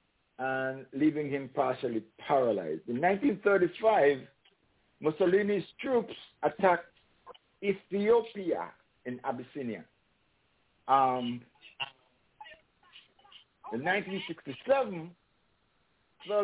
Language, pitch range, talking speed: English, 130-180 Hz, 60 wpm